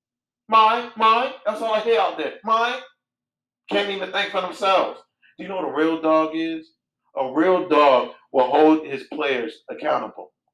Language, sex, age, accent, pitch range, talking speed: English, male, 40-59, American, 125-180 Hz, 175 wpm